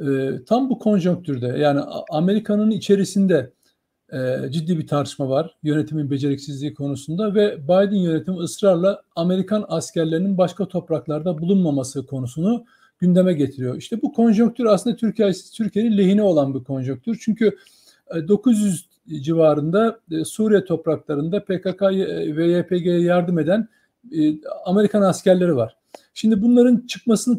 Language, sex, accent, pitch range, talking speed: Turkish, male, native, 160-210 Hz, 110 wpm